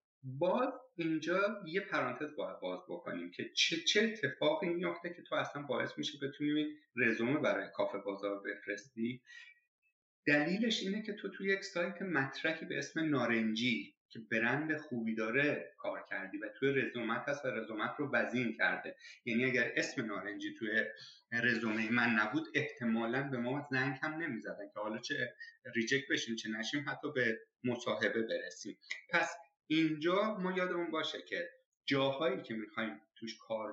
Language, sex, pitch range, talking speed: Persian, male, 115-170 Hz, 155 wpm